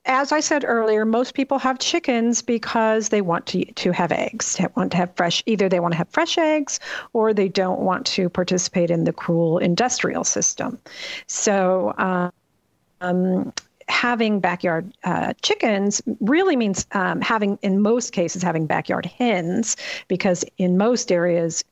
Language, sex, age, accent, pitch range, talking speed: English, female, 50-69, American, 180-245 Hz, 160 wpm